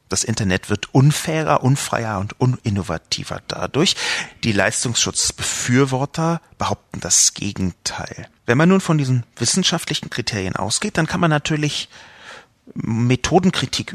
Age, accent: 40-59, German